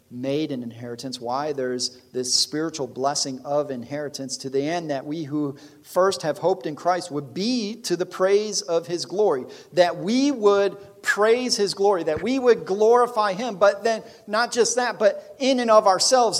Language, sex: English, male